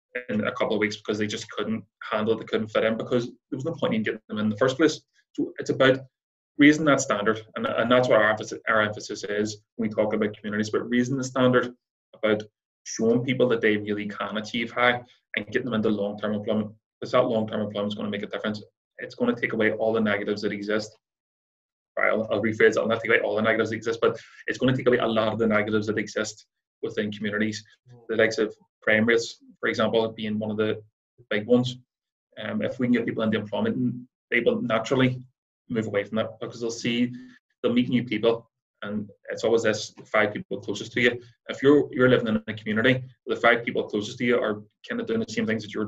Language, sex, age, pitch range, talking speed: English, male, 20-39, 105-125 Hz, 240 wpm